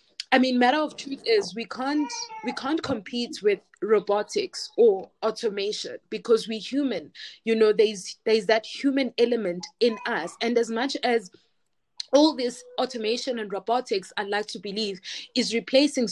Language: English